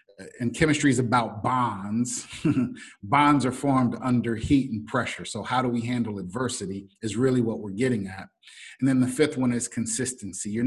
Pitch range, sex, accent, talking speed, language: 110-135 Hz, male, American, 180 wpm, English